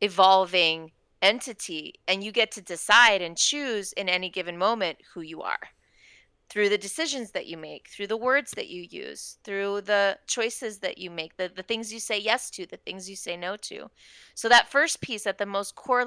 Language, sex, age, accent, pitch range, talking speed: English, female, 30-49, American, 185-240 Hz, 205 wpm